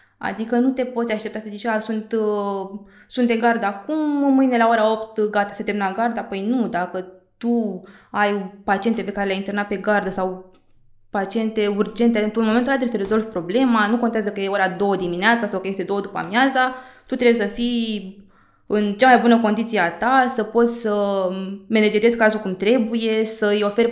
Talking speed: 190 wpm